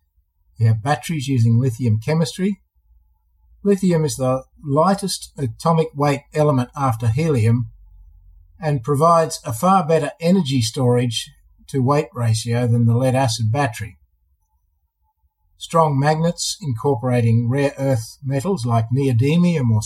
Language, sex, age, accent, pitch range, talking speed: English, male, 50-69, Australian, 110-155 Hz, 120 wpm